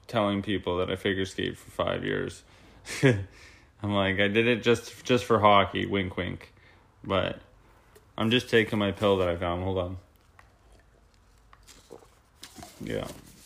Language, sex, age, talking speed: English, male, 20-39, 145 wpm